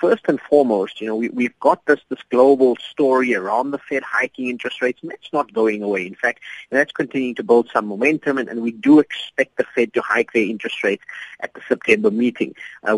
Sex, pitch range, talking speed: male, 120-160 Hz, 220 wpm